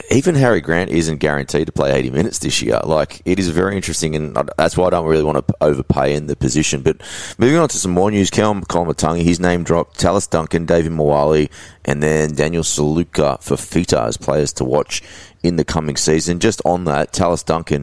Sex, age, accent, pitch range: male, 20-39, Australian, 70-85 Hz